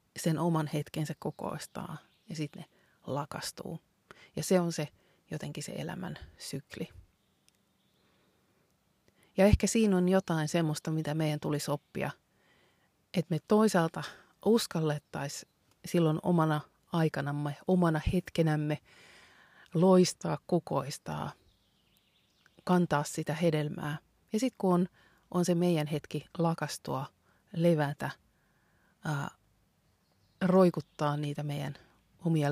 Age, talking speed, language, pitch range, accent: 30-49, 100 wpm, Finnish, 150-175 Hz, native